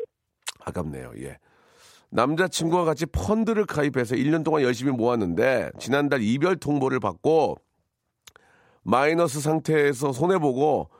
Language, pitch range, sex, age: Korean, 105-155 Hz, male, 40-59